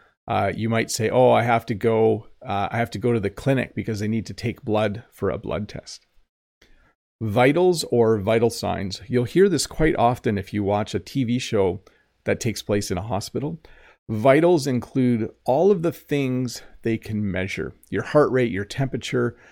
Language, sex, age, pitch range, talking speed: English, male, 40-59, 105-125 Hz, 190 wpm